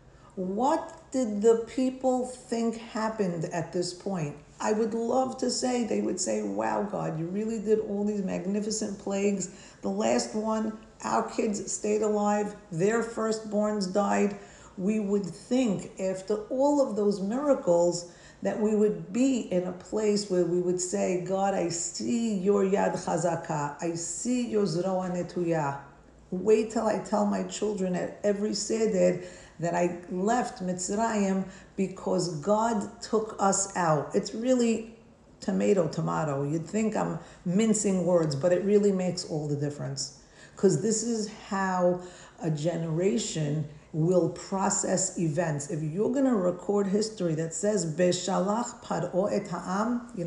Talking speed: 140 wpm